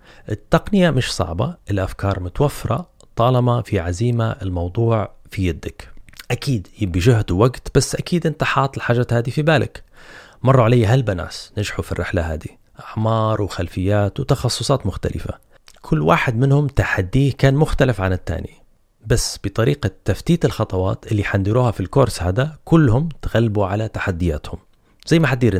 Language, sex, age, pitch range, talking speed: Arabic, male, 30-49, 95-125 Hz, 135 wpm